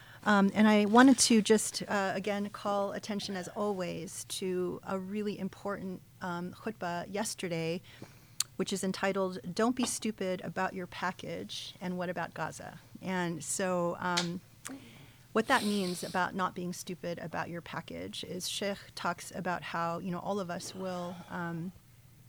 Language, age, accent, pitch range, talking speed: English, 30-49, American, 175-200 Hz, 155 wpm